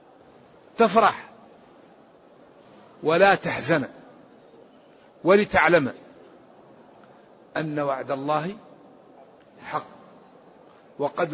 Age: 50-69